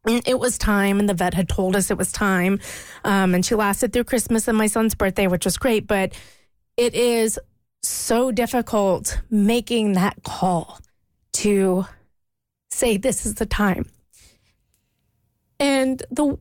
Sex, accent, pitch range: female, American, 185-225 Hz